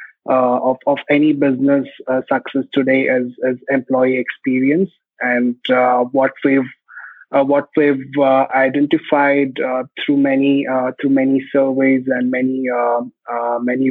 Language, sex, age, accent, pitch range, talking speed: English, male, 20-39, Indian, 130-155 Hz, 140 wpm